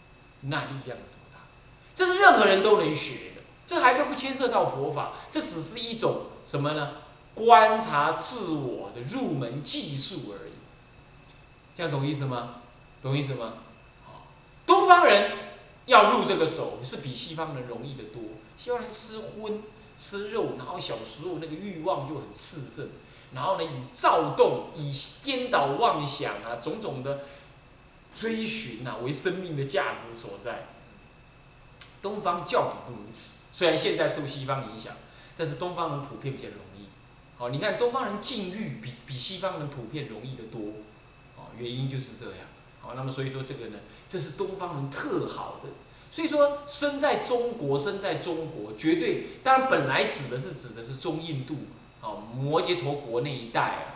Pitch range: 130-200 Hz